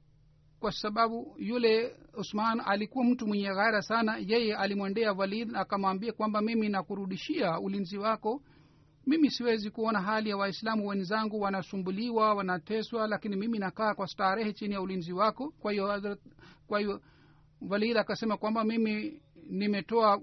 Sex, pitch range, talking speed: male, 190-225 Hz, 130 wpm